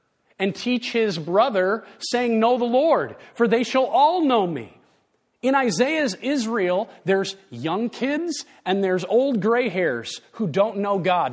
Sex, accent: male, American